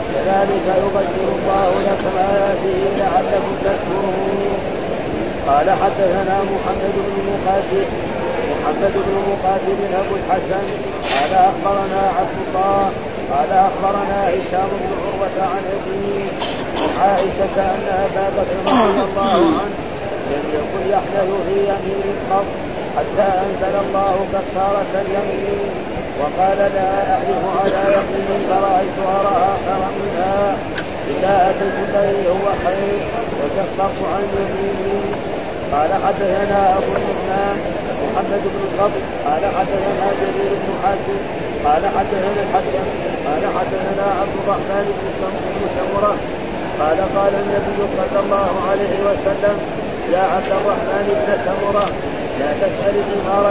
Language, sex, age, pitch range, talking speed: Arabic, male, 50-69, 190-200 Hz, 110 wpm